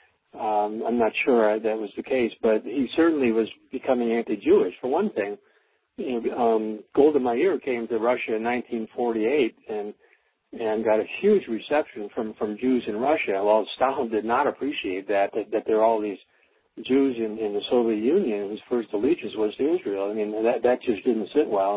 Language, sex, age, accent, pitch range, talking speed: English, male, 60-79, American, 110-130 Hz, 195 wpm